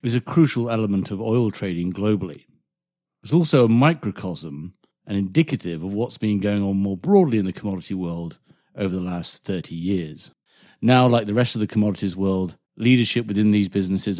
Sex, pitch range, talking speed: male, 95-125 Hz, 180 wpm